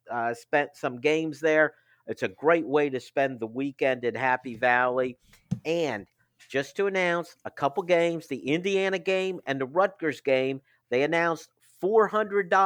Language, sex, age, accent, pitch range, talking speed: English, male, 50-69, American, 130-180 Hz, 150 wpm